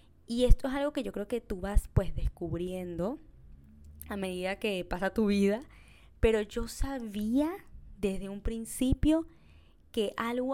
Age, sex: 10-29, female